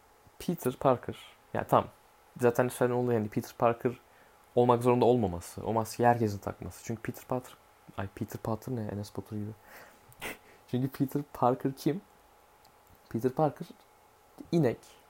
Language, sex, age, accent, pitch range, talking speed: Turkish, male, 20-39, native, 105-125 Hz, 145 wpm